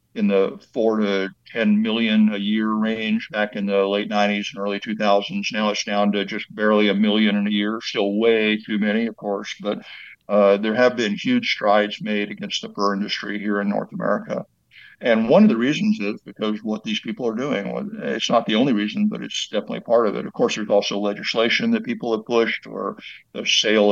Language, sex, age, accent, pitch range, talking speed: English, male, 60-79, American, 100-115 Hz, 215 wpm